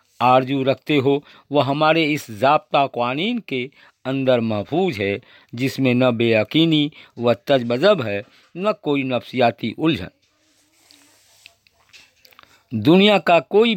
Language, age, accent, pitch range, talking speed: Hindi, 50-69, native, 120-150 Hz, 110 wpm